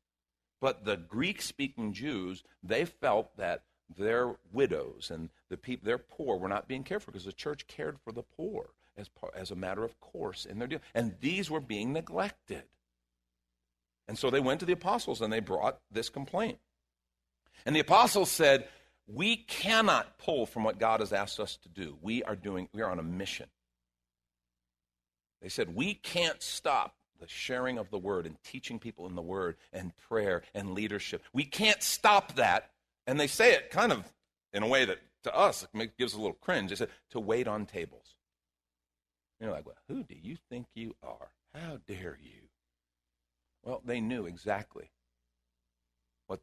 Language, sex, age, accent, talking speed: English, male, 50-69, American, 180 wpm